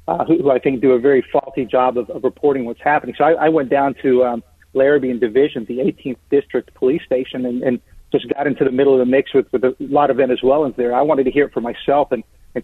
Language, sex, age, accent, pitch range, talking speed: English, male, 40-59, American, 125-155 Hz, 265 wpm